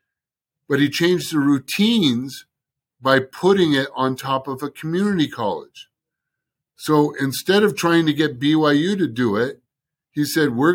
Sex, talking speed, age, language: male, 150 wpm, 50-69, English